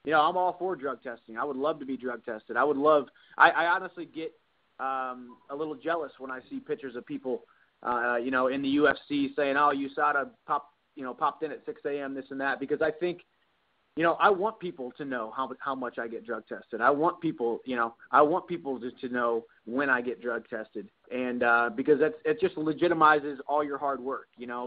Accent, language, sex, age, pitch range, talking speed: American, English, male, 30-49, 125-155 Hz, 240 wpm